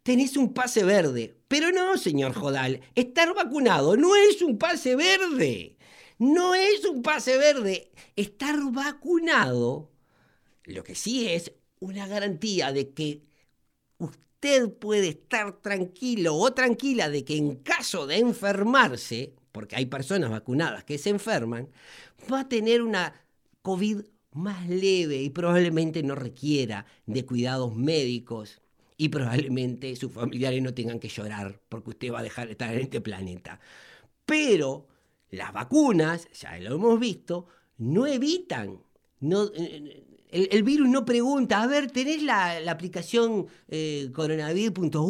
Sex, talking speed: male, 135 wpm